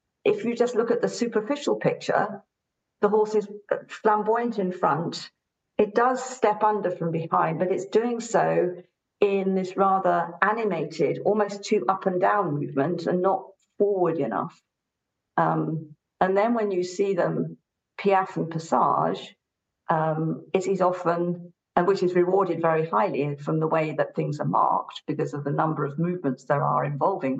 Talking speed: 160 wpm